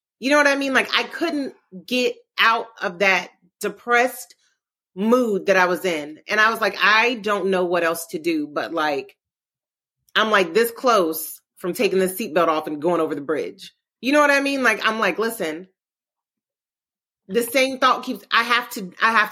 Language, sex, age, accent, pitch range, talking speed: English, female, 30-49, American, 180-250 Hz, 195 wpm